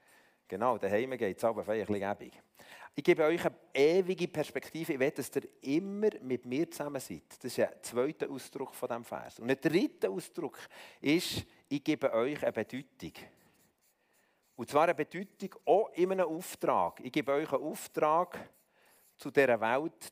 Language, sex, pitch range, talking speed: German, male, 135-175 Hz, 165 wpm